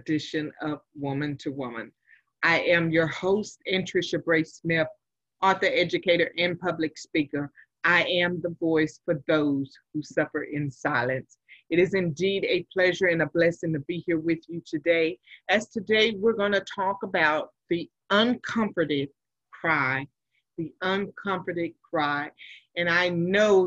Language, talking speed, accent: English, 145 wpm, American